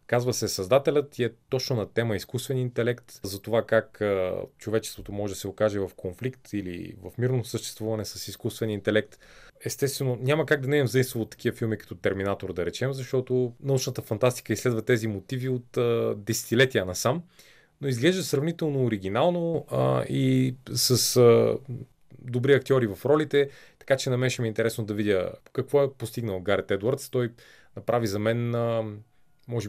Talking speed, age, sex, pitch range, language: 160 wpm, 30-49, male, 110-130 Hz, Bulgarian